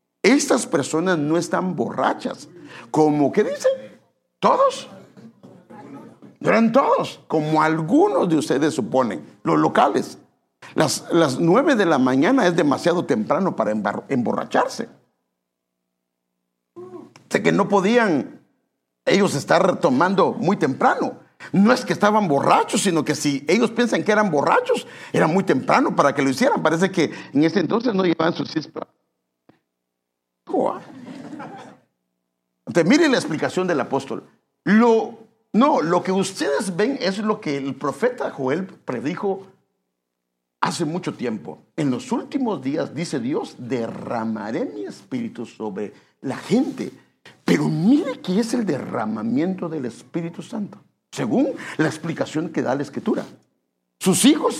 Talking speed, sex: 130 wpm, male